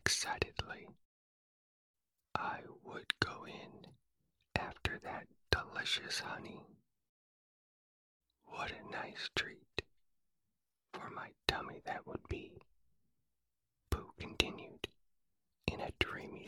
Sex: male